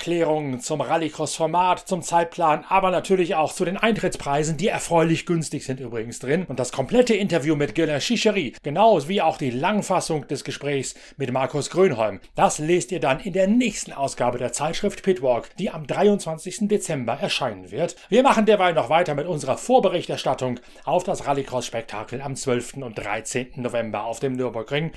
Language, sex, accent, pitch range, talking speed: German, male, German, 135-185 Hz, 170 wpm